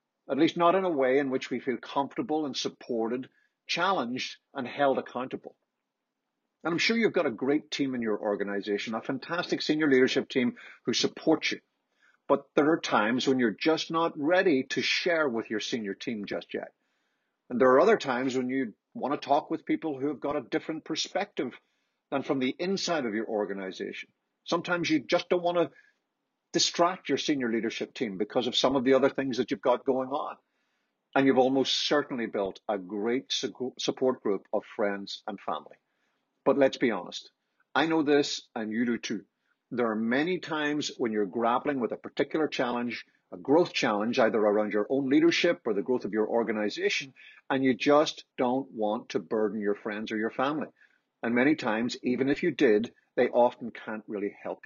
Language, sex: English, male